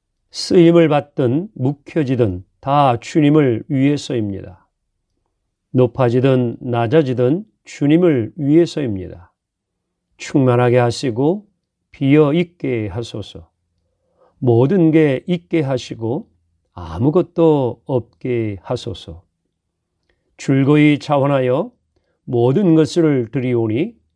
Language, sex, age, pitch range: Korean, male, 40-59, 95-150 Hz